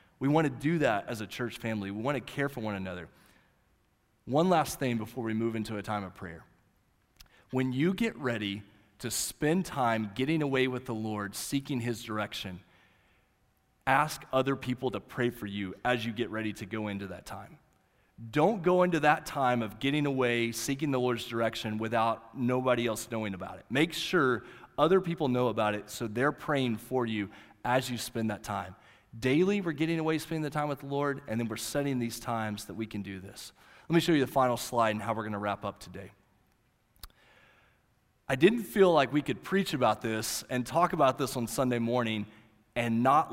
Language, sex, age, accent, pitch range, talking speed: English, male, 30-49, American, 105-140 Hz, 205 wpm